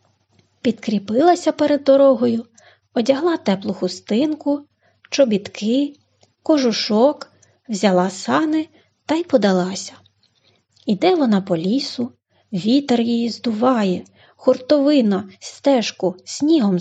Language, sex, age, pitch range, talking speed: Ukrainian, female, 30-49, 190-275 Hz, 80 wpm